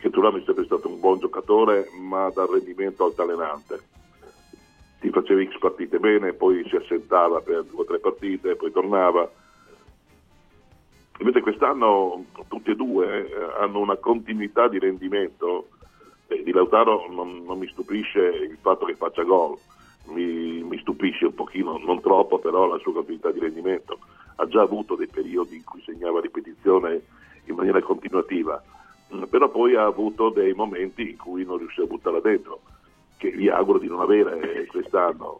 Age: 50-69